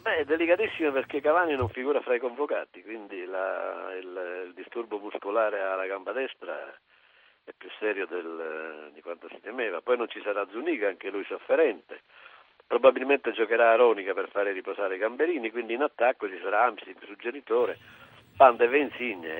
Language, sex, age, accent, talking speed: Italian, male, 60-79, native, 165 wpm